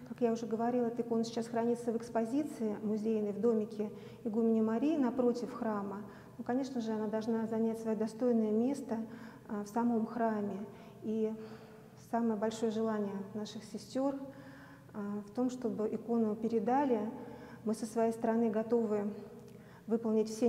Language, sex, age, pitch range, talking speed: Russian, female, 30-49, 215-235 Hz, 135 wpm